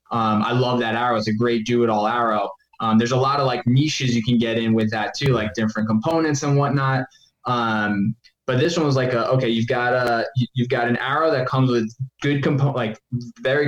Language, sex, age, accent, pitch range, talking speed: English, male, 10-29, American, 115-130 Hz, 230 wpm